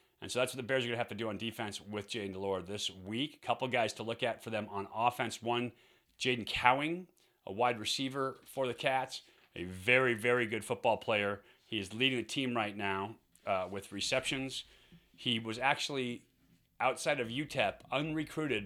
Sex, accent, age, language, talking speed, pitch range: male, American, 30-49, English, 195 wpm, 100-125 Hz